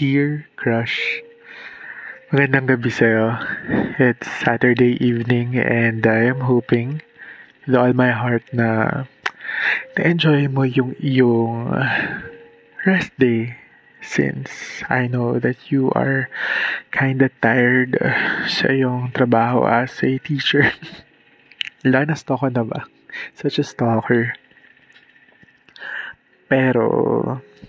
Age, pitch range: 20-39, 120-140 Hz